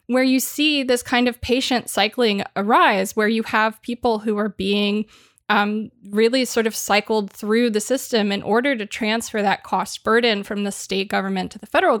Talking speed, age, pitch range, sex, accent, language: 190 wpm, 20-39, 210-260 Hz, female, American, English